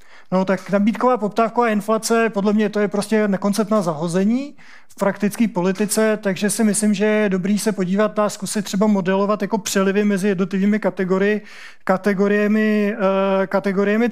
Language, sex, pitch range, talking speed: Czech, male, 195-215 Hz, 145 wpm